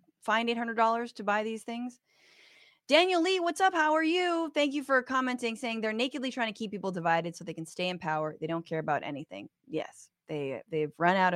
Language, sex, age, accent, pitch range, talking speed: English, female, 20-39, American, 180-255 Hz, 220 wpm